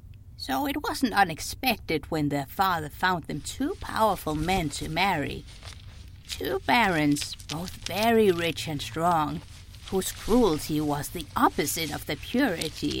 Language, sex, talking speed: English, female, 135 wpm